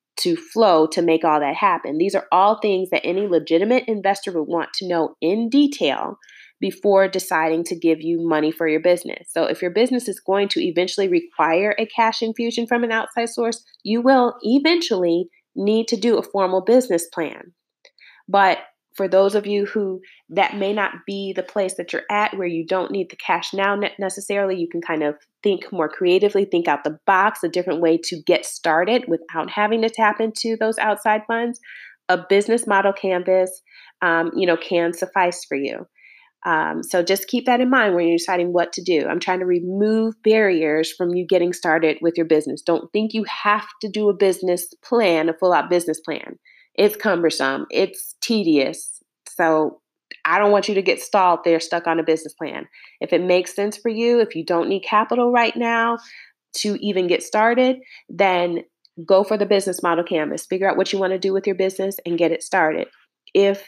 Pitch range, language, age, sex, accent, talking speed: 175-220 Hz, English, 30-49, female, American, 200 wpm